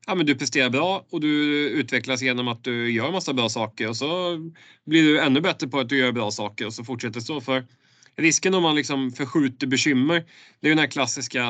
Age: 30-49